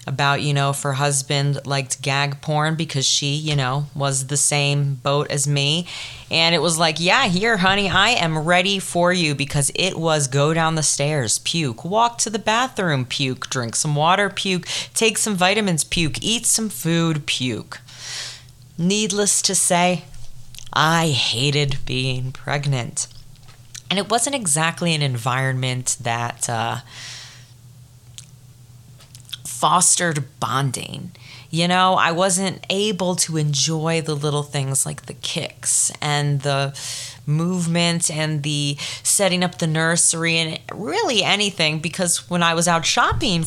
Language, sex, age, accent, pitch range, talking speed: English, female, 30-49, American, 130-175 Hz, 145 wpm